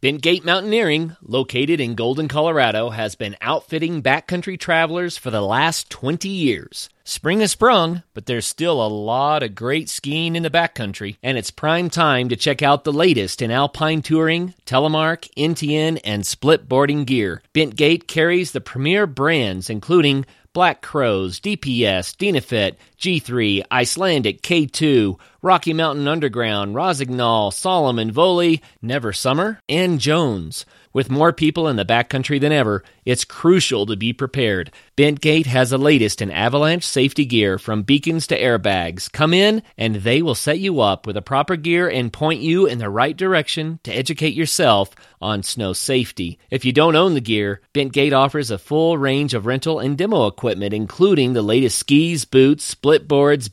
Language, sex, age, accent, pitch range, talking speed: English, male, 30-49, American, 115-160 Hz, 160 wpm